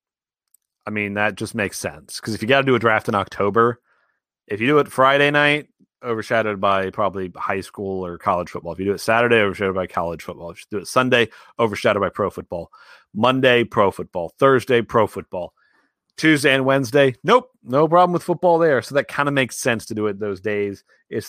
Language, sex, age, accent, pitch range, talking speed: English, male, 30-49, American, 95-120 Hz, 210 wpm